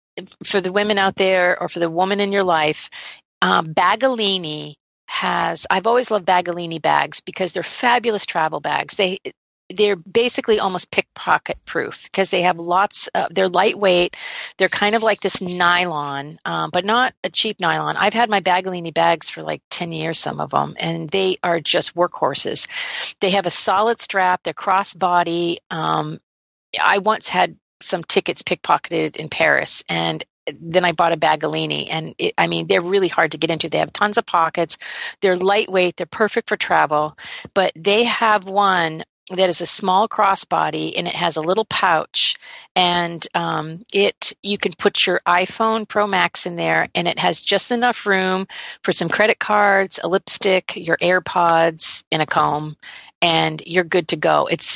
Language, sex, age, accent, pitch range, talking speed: English, female, 40-59, American, 165-200 Hz, 175 wpm